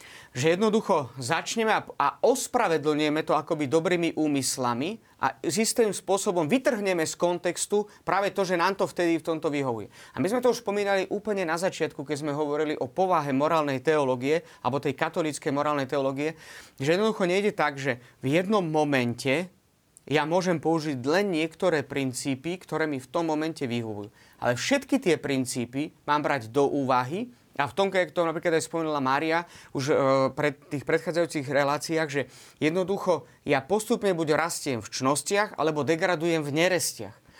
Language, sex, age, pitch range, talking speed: Slovak, male, 30-49, 145-175 Hz, 165 wpm